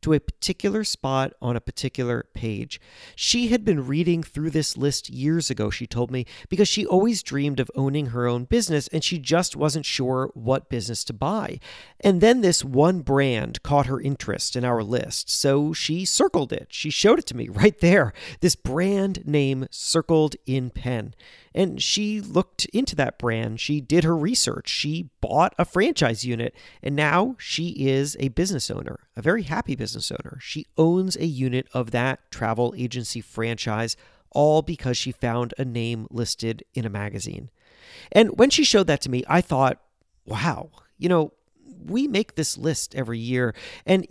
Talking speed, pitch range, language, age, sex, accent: 180 wpm, 125-170 Hz, English, 40-59, male, American